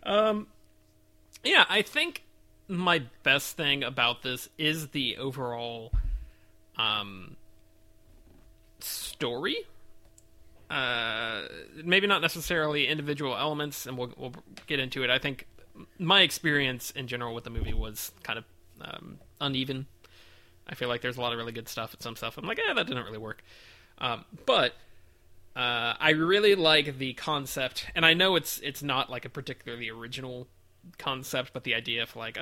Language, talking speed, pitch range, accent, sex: English, 155 wpm, 115-150 Hz, American, male